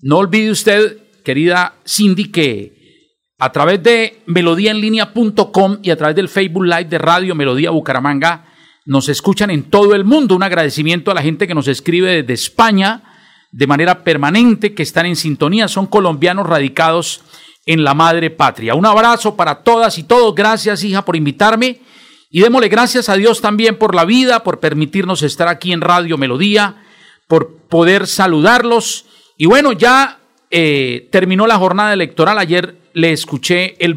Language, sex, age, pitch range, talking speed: Spanish, male, 50-69, 165-225 Hz, 160 wpm